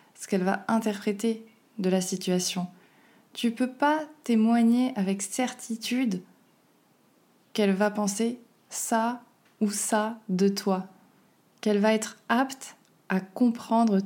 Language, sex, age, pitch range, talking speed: French, female, 20-39, 200-235 Hz, 120 wpm